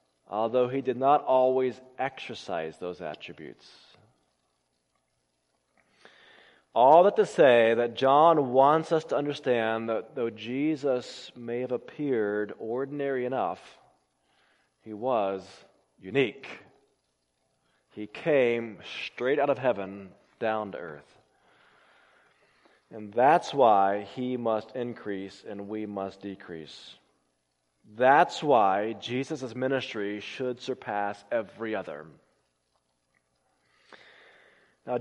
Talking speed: 100 wpm